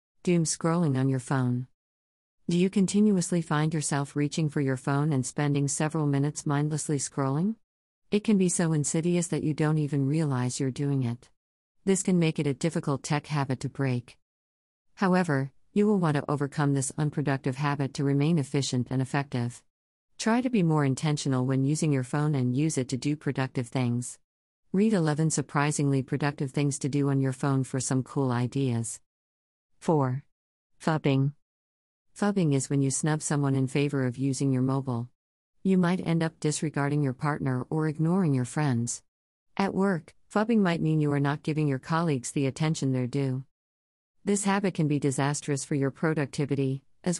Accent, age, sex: American, 50-69, female